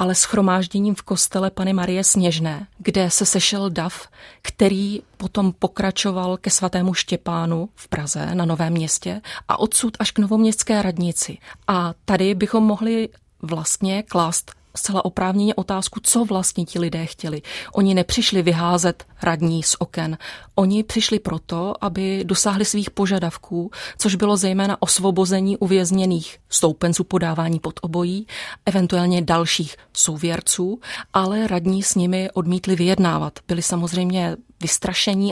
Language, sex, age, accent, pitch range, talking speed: Czech, female, 30-49, native, 170-200 Hz, 130 wpm